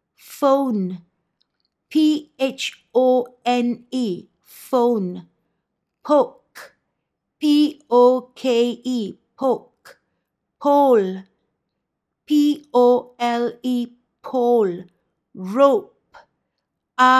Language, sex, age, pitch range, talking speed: Malay, female, 50-69, 220-260 Hz, 75 wpm